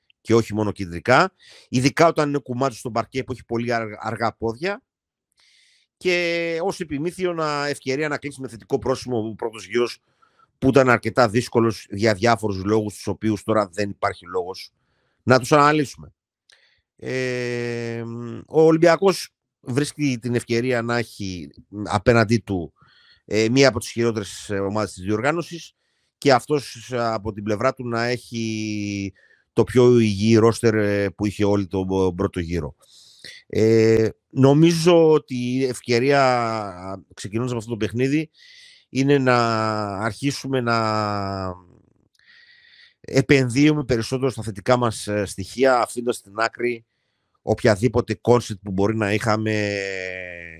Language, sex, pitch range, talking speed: Greek, male, 105-130 Hz, 130 wpm